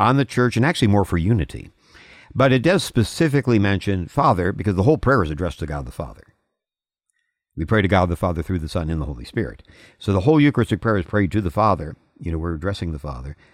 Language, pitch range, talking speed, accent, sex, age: English, 85-115 Hz, 235 wpm, American, male, 60-79